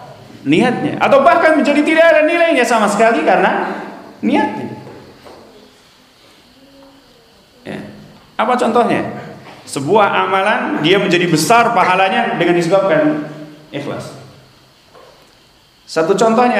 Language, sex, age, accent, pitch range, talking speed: Indonesian, male, 40-59, native, 170-245 Hz, 90 wpm